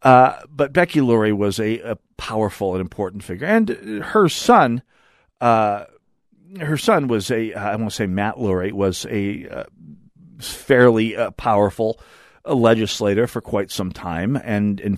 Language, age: English, 50-69